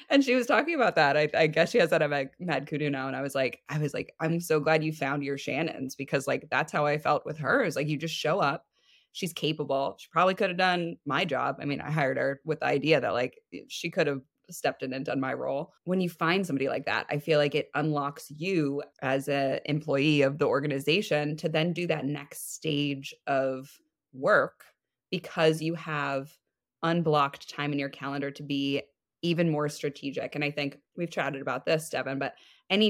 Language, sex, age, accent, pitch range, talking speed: English, female, 20-39, American, 140-165 Hz, 220 wpm